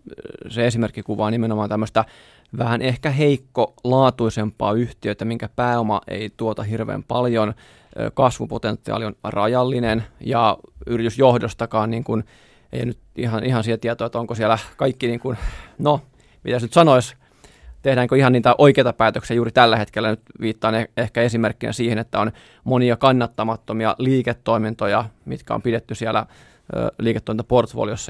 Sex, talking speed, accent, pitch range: male, 130 wpm, native, 110-125 Hz